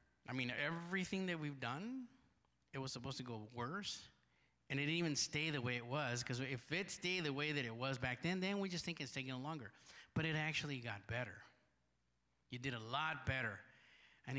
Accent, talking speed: American, 210 wpm